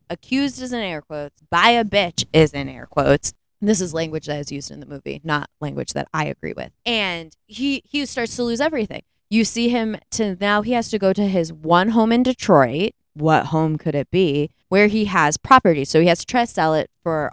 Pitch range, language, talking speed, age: 155-215 Hz, English, 230 wpm, 20-39